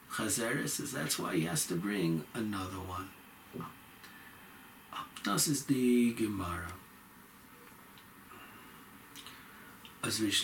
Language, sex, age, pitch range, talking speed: English, male, 60-79, 100-140 Hz, 100 wpm